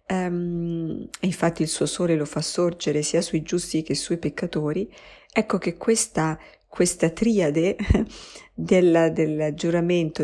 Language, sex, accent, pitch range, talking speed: Italian, female, native, 150-170 Hz, 135 wpm